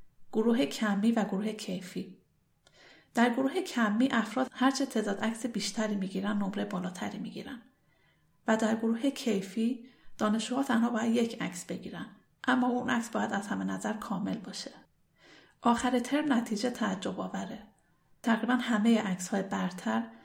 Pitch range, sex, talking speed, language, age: 205-250 Hz, female, 135 wpm, Persian, 40-59